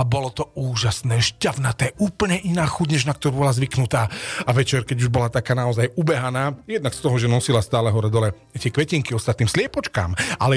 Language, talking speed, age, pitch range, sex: Slovak, 180 wpm, 40-59, 125-180 Hz, male